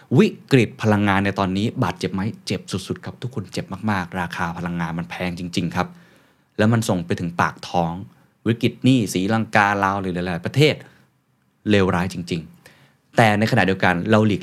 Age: 20-39